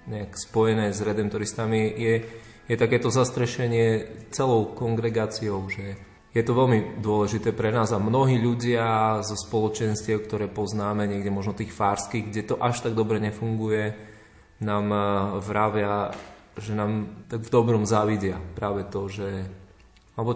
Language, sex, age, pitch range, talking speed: Slovak, male, 20-39, 100-115 Hz, 140 wpm